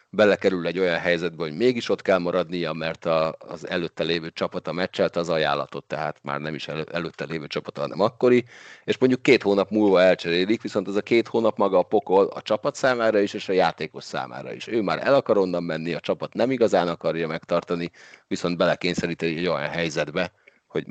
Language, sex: Hungarian, male